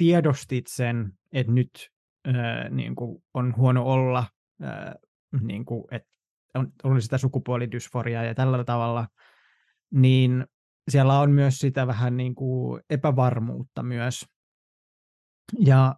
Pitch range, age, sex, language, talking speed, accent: 120-140 Hz, 20-39, male, Finnish, 120 wpm, native